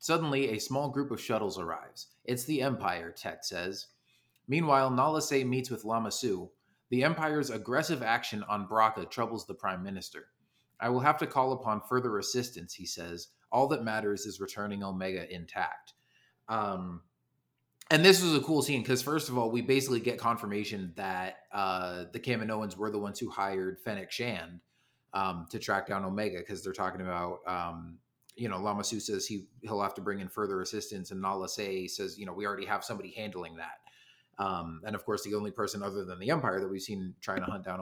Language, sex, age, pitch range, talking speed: English, male, 30-49, 95-125 Hz, 200 wpm